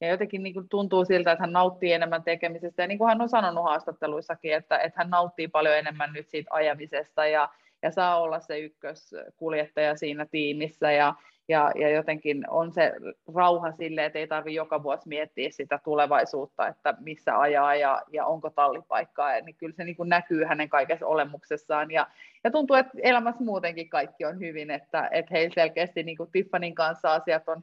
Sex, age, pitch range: female, 30-49, 150-170 Hz